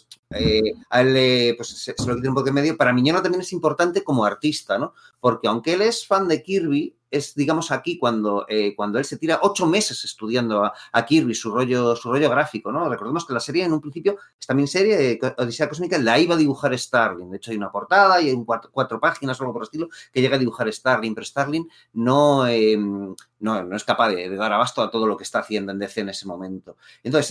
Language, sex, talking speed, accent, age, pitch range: Spanish, male, 240 wpm, Spanish, 30-49, 115-170 Hz